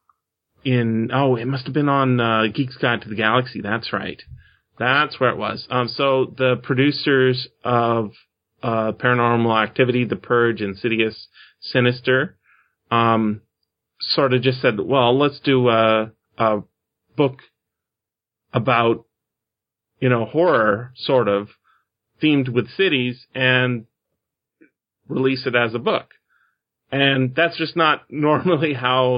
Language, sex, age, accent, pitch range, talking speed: English, male, 30-49, American, 110-130 Hz, 130 wpm